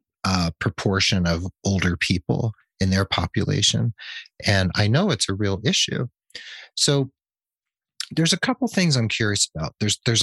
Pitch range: 95-125 Hz